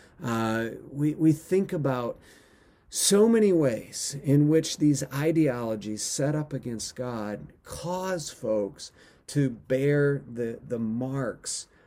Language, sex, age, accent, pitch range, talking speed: English, male, 40-59, American, 105-135 Hz, 115 wpm